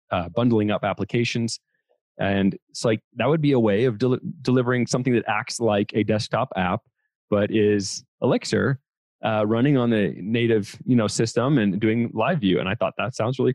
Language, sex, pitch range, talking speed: English, male, 105-125 Hz, 190 wpm